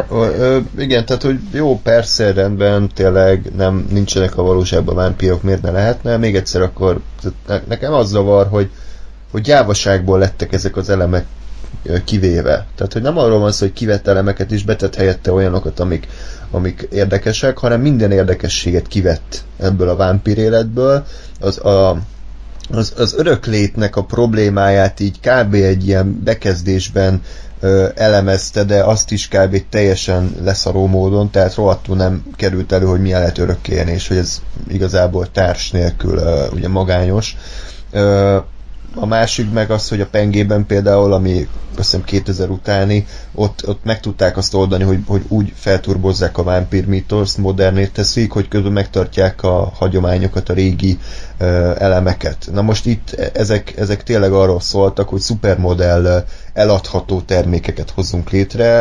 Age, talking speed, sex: 30-49, 145 wpm, male